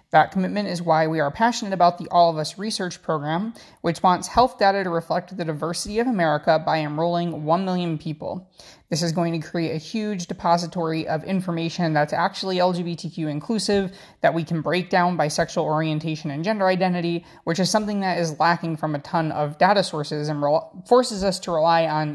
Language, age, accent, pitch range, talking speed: English, 20-39, American, 155-185 Hz, 195 wpm